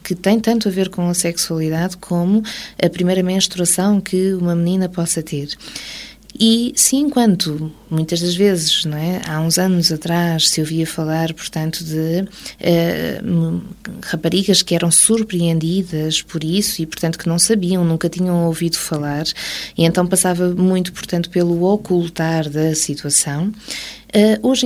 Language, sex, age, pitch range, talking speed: Portuguese, female, 20-39, 165-210 Hz, 145 wpm